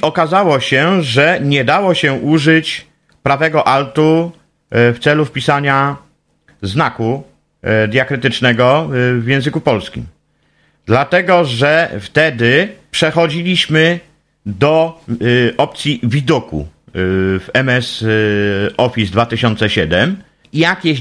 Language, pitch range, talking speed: Polish, 115-155 Hz, 85 wpm